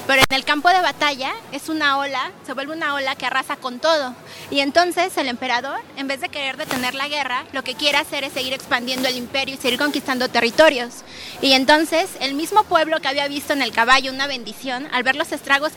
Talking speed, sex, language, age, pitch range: 220 wpm, female, Spanish, 30-49, 250-295 Hz